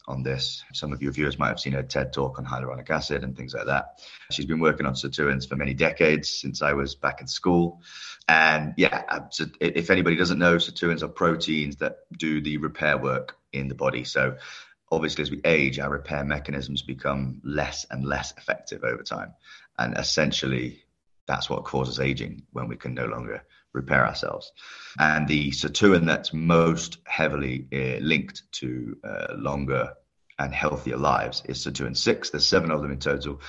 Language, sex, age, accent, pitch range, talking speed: English, male, 30-49, British, 65-75 Hz, 180 wpm